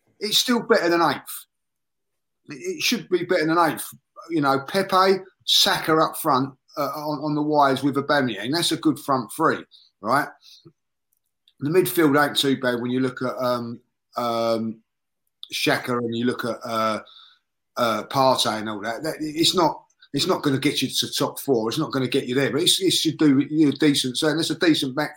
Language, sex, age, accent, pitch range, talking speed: English, male, 30-49, British, 130-165 Hz, 205 wpm